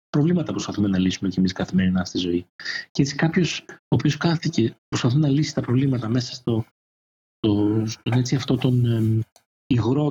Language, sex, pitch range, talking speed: Greek, male, 105-150 Hz, 155 wpm